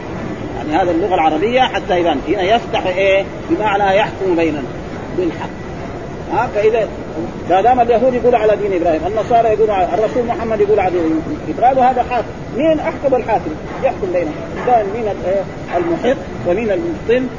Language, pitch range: Arabic, 170-210 Hz